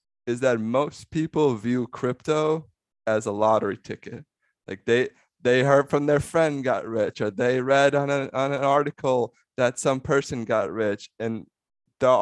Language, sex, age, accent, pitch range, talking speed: English, male, 20-39, American, 110-140 Hz, 165 wpm